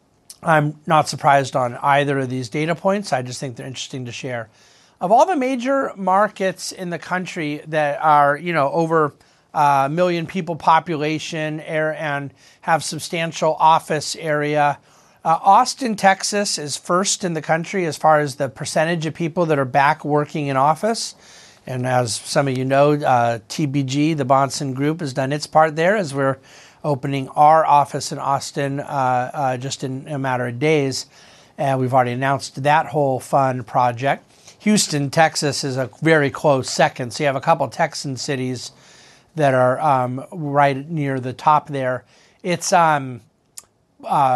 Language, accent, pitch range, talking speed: English, American, 135-165 Hz, 170 wpm